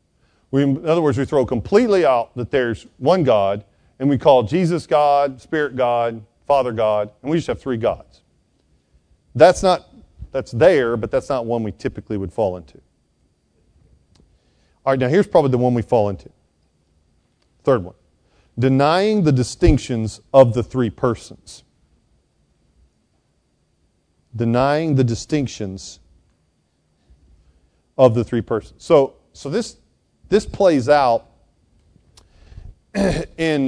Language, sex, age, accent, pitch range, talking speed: English, male, 40-59, American, 95-145 Hz, 130 wpm